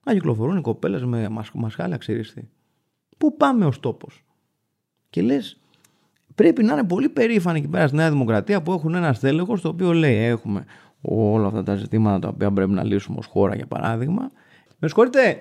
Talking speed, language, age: 185 wpm, Greek, 30-49